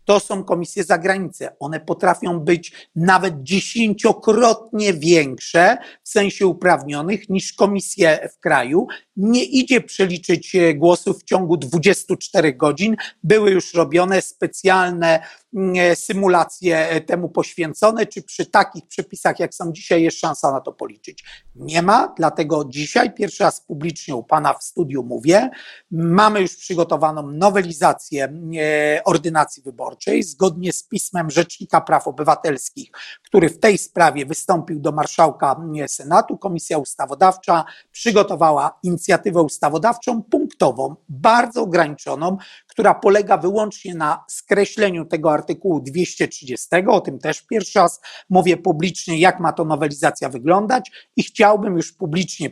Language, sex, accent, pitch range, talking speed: Polish, male, native, 160-200 Hz, 125 wpm